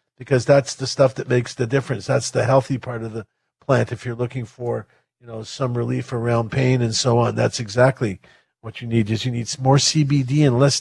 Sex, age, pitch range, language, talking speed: male, 50-69, 125-150 Hz, English, 220 wpm